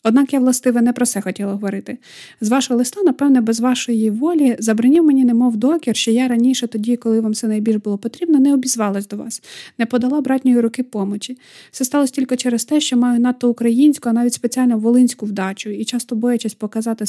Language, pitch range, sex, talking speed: Ukrainian, 215-250 Hz, female, 195 wpm